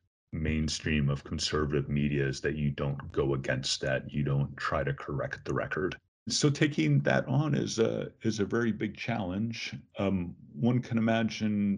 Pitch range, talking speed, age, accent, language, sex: 70-90 Hz, 170 wpm, 40-59, American, English, male